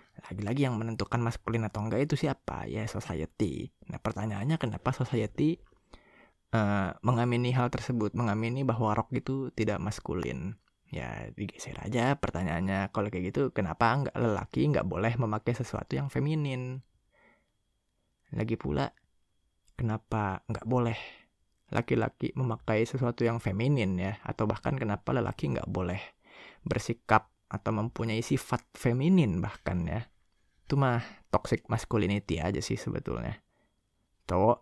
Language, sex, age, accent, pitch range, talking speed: Indonesian, male, 20-39, native, 105-130 Hz, 125 wpm